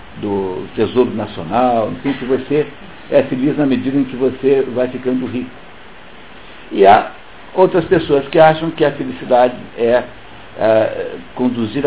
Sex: male